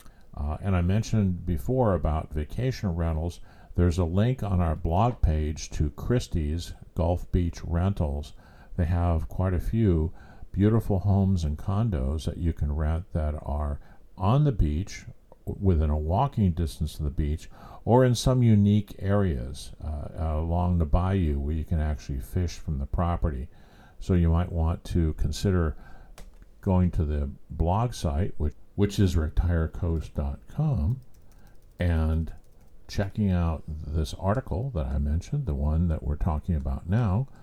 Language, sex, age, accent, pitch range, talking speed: English, male, 50-69, American, 80-105 Hz, 145 wpm